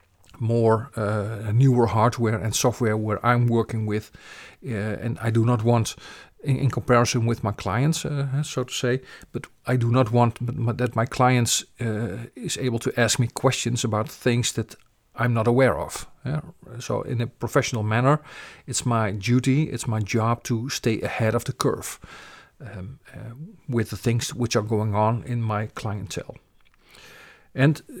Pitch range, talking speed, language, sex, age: 110-130 Hz, 165 wpm, English, male, 40-59